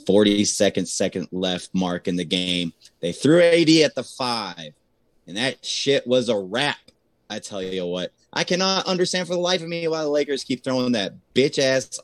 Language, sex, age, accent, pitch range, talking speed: English, male, 30-49, American, 100-130 Hz, 200 wpm